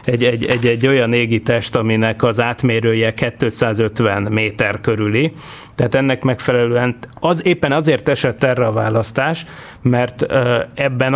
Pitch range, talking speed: 120-140 Hz, 130 wpm